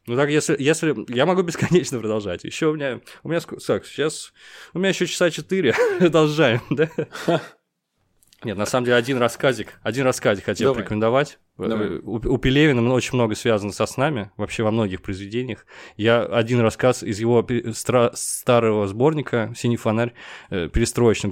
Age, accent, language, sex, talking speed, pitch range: 20-39, native, Russian, male, 150 wpm, 115-140 Hz